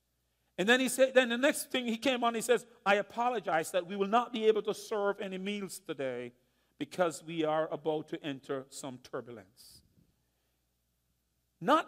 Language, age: English, 50-69